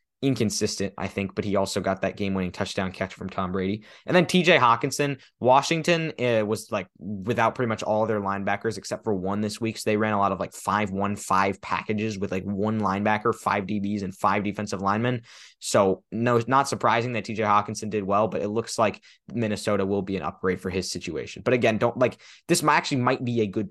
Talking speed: 225 wpm